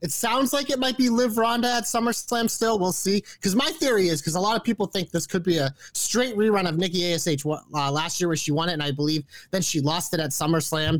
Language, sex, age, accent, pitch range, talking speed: English, male, 30-49, American, 155-210 Hz, 260 wpm